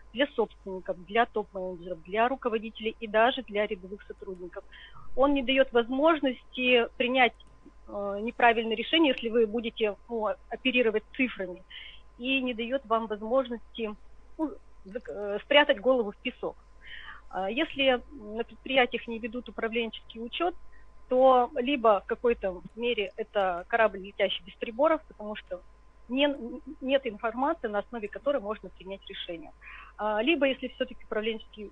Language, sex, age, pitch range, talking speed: Russian, female, 30-49, 205-250 Hz, 120 wpm